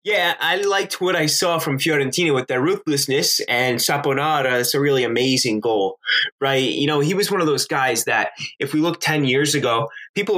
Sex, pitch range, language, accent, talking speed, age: male, 130-155 Hz, English, American, 205 wpm, 20-39